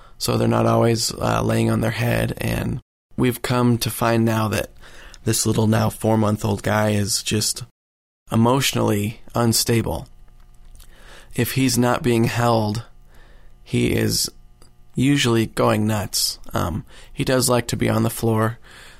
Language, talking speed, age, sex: English, 140 wpm, 20-39, male